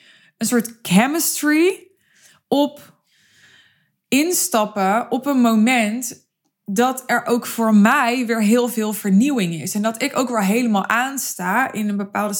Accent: Dutch